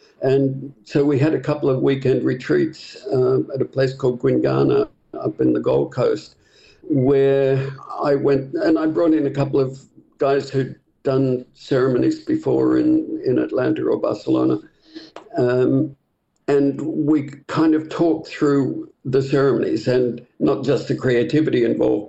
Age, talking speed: 60-79, 150 wpm